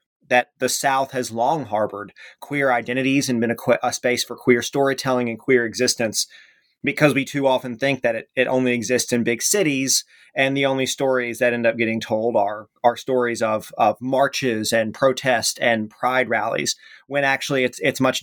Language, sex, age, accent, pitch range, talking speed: English, male, 30-49, American, 120-135 Hz, 190 wpm